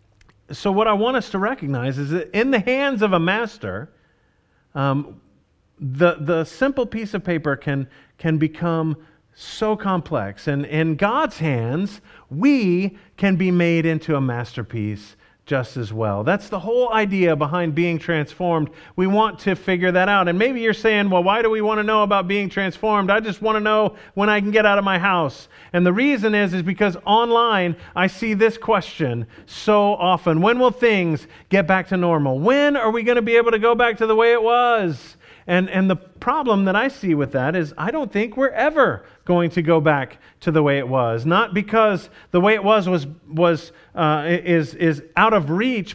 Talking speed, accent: 200 wpm, American